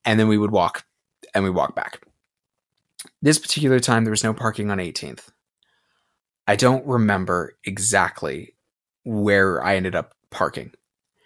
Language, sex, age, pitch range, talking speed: English, male, 20-39, 105-130 Hz, 145 wpm